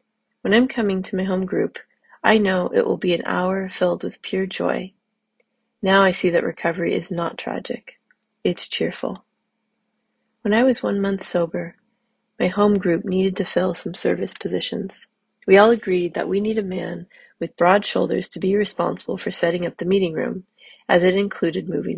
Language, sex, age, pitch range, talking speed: English, female, 30-49, 185-220 Hz, 185 wpm